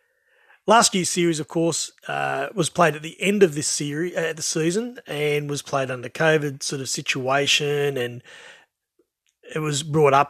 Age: 30-49